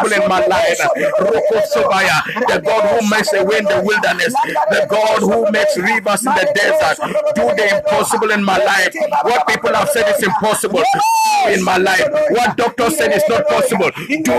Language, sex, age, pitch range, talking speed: English, male, 50-69, 205-300 Hz, 170 wpm